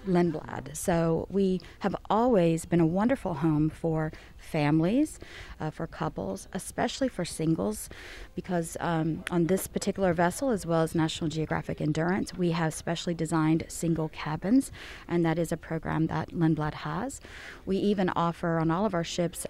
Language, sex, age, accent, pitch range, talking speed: English, female, 30-49, American, 160-205 Hz, 155 wpm